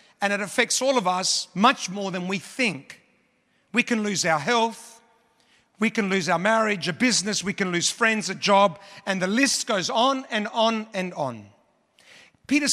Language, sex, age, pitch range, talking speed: English, male, 50-69, 195-240 Hz, 185 wpm